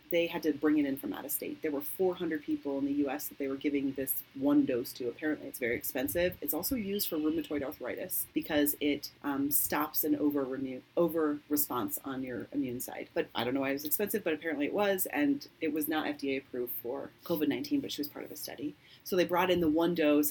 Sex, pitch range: female, 140-175 Hz